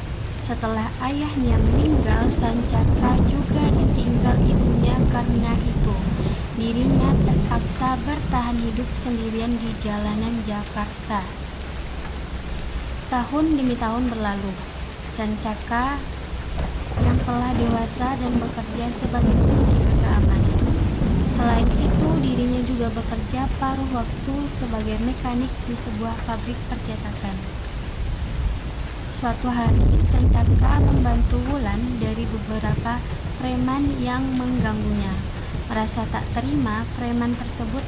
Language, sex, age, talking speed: Indonesian, female, 20-39, 90 wpm